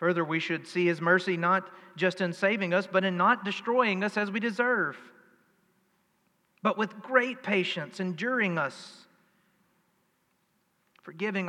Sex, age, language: male, 40-59, English